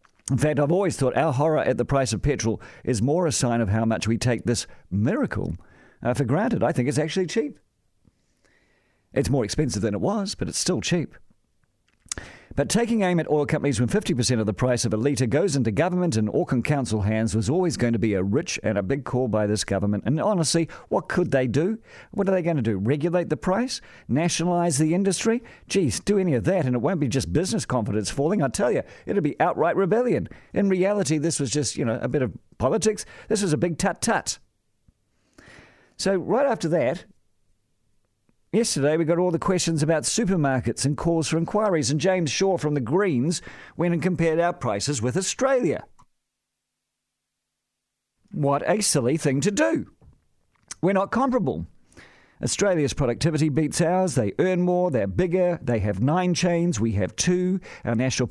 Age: 50-69